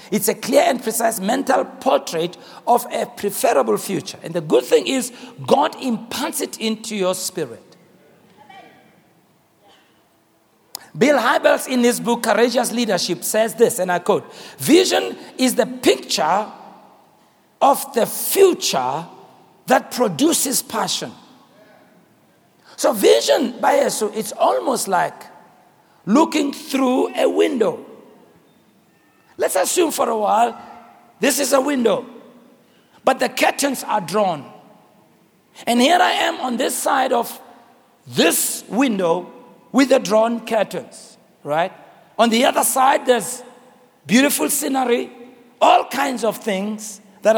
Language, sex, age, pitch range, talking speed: English, male, 60-79, 215-275 Hz, 120 wpm